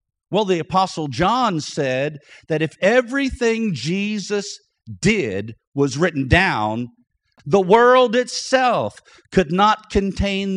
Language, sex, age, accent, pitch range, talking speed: English, male, 50-69, American, 125-195 Hz, 110 wpm